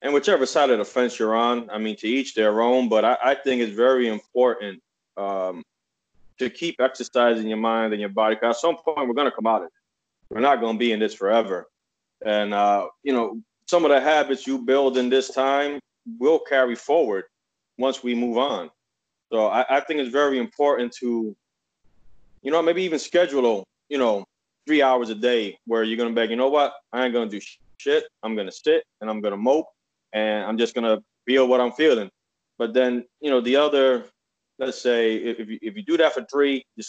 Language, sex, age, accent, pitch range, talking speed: English, male, 30-49, American, 115-135 Hz, 220 wpm